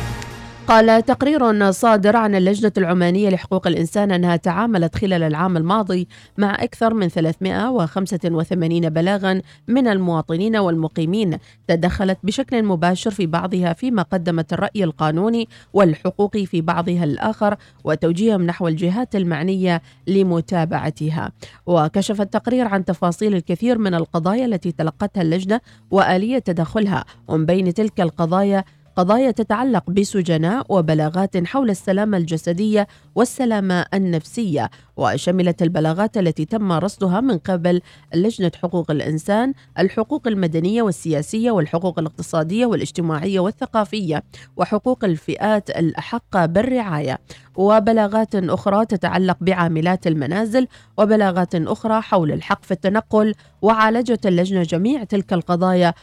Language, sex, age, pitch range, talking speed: Arabic, female, 40-59, 165-210 Hz, 110 wpm